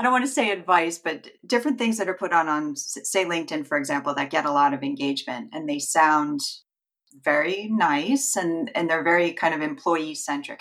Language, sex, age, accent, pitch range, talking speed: English, female, 30-49, American, 155-215 Hz, 210 wpm